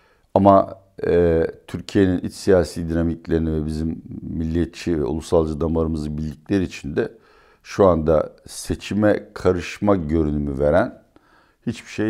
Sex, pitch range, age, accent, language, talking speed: male, 75-100 Hz, 60-79, native, Turkish, 115 wpm